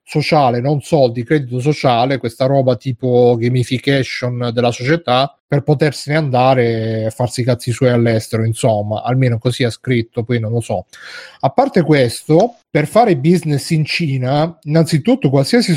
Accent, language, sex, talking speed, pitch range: native, Italian, male, 150 wpm, 130-165 Hz